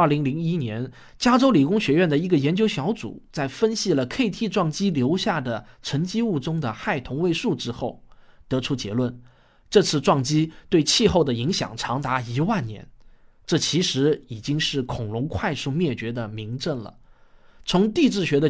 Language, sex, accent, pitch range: Chinese, male, native, 120-175 Hz